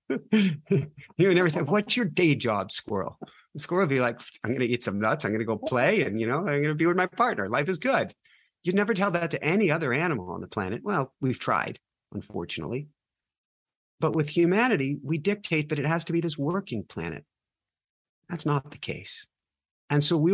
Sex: male